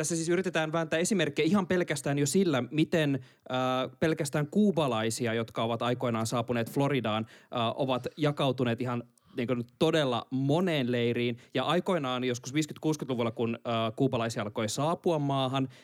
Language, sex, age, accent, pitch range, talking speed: Finnish, male, 20-39, native, 125-150 Hz, 135 wpm